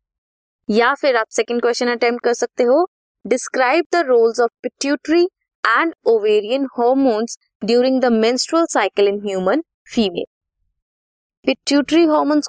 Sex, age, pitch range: female, 20-39, 215-300 Hz